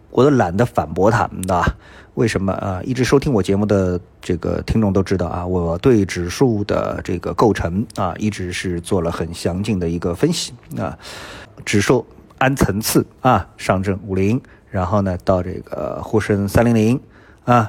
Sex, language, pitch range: male, Chinese, 90-110 Hz